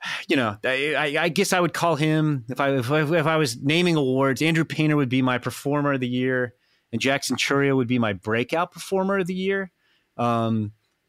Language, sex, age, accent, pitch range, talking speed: English, male, 30-49, American, 120-145 Hz, 215 wpm